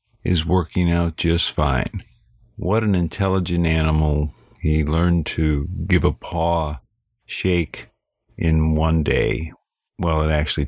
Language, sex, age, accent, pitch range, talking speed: English, male, 50-69, American, 80-105 Hz, 125 wpm